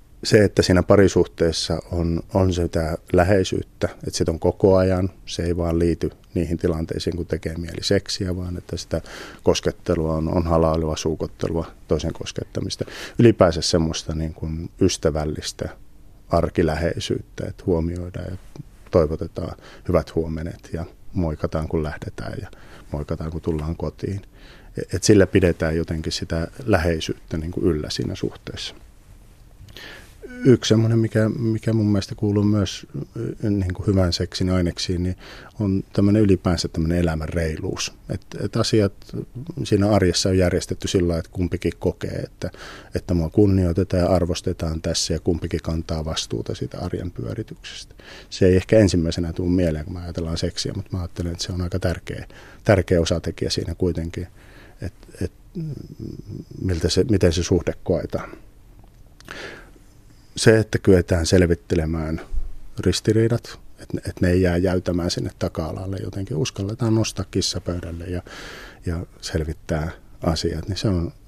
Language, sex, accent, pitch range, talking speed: Finnish, male, native, 85-100 Hz, 135 wpm